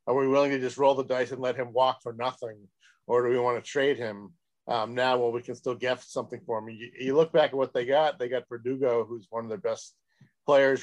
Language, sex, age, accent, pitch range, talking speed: English, male, 50-69, American, 115-130 Hz, 270 wpm